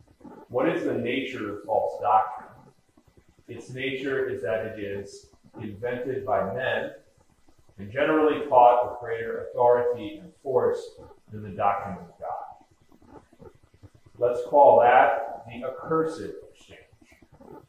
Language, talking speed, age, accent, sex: English, 120 wpm, 30-49, American, male